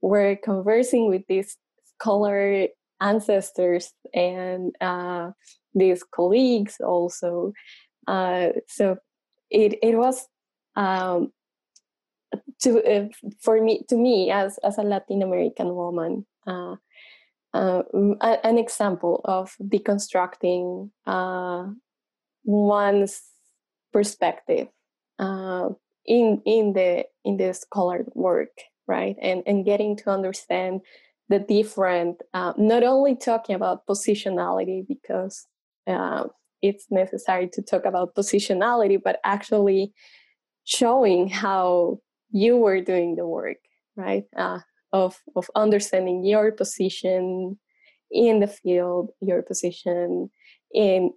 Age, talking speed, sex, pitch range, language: 10-29, 105 wpm, female, 185-220 Hz, English